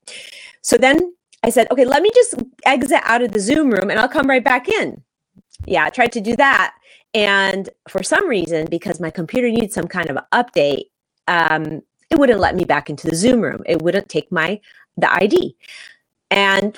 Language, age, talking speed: English, 30-49, 195 wpm